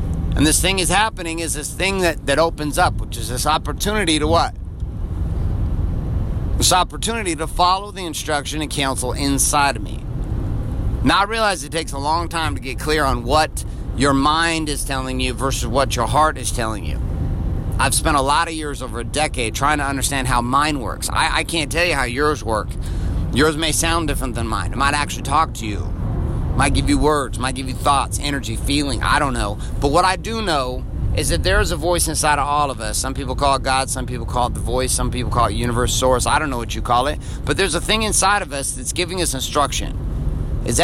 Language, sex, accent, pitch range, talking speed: English, male, American, 105-150 Hz, 225 wpm